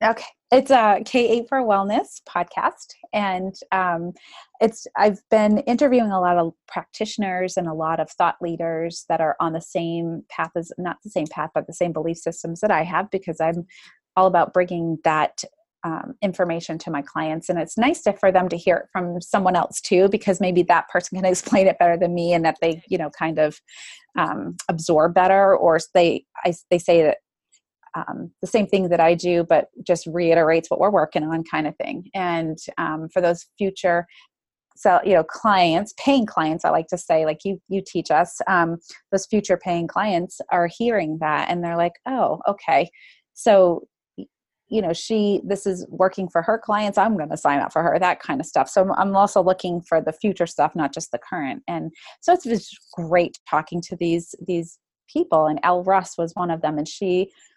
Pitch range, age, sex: 165-195 Hz, 30-49, female